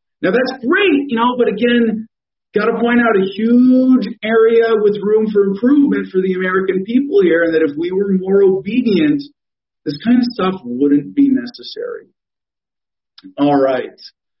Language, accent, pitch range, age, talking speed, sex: English, American, 160-245 Hz, 40-59, 160 wpm, male